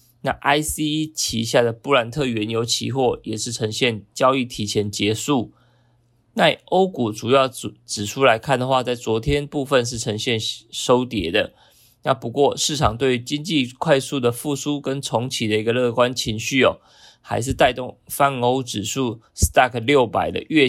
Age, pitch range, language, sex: 20-39, 115-135 Hz, Chinese, male